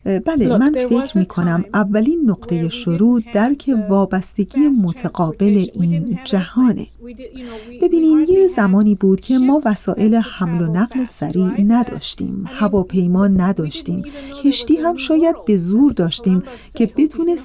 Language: Persian